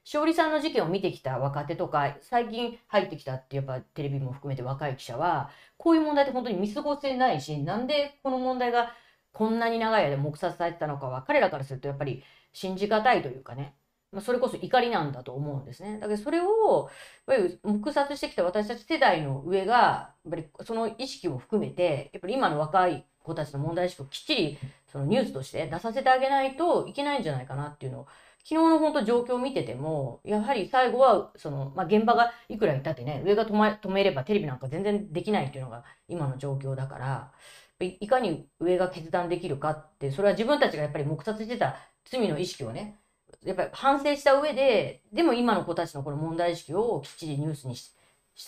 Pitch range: 145-240 Hz